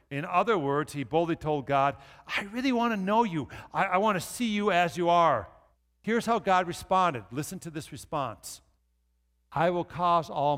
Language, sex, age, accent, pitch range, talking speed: English, male, 50-69, American, 115-175 Hz, 195 wpm